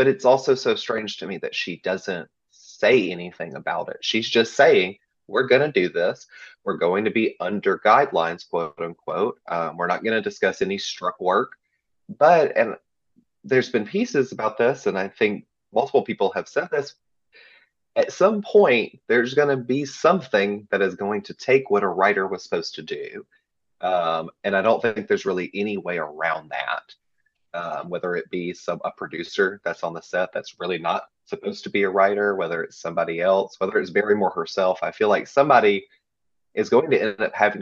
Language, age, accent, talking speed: English, 30-49, American, 195 wpm